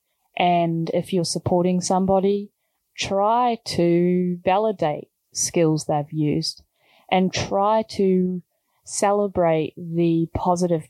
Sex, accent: female, Australian